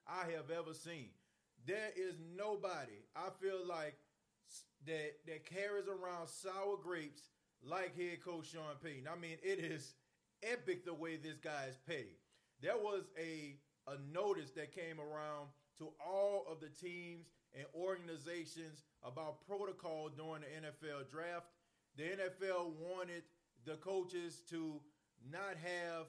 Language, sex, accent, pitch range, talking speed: English, male, American, 155-180 Hz, 140 wpm